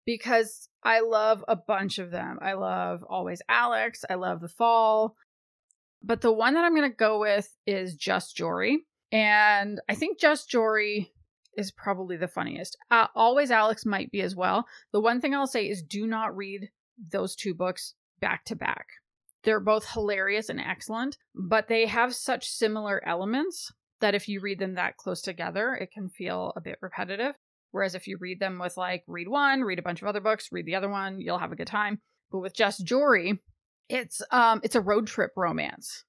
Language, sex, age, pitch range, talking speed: English, female, 20-39, 190-225 Hz, 195 wpm